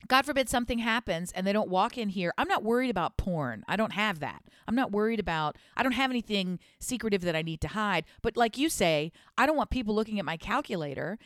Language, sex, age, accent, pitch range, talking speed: English, female, 40-59, American, 170-220 Hz, 240 wpm